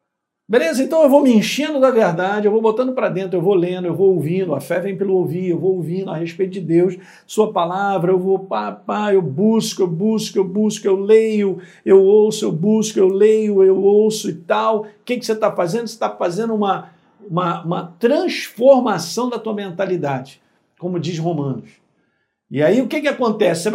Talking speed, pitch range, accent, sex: 205 wpm, 185-245 Hz, Brazilian, male